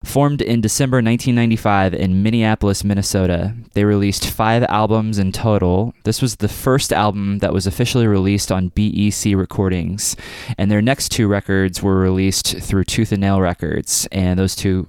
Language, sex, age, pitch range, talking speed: English, male, 20-39, 95-110 Hz, 160 wpm